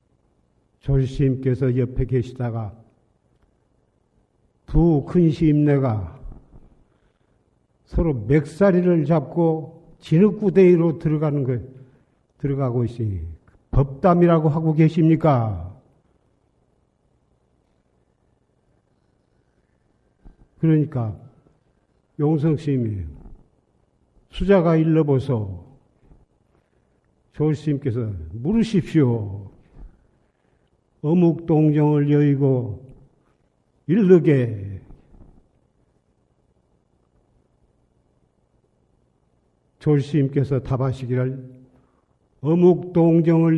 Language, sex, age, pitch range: Korean, male, 50-69, 120-155 Hz